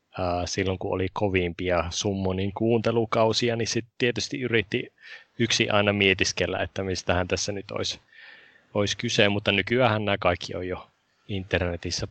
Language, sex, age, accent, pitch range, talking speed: Finnish, male, 20-39, native, 90-105 Hz, 135 wpm